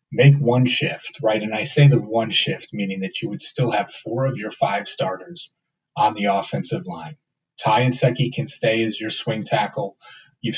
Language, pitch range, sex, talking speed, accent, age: English, 110-150 Hz, male, 200 wpm, American, 30-49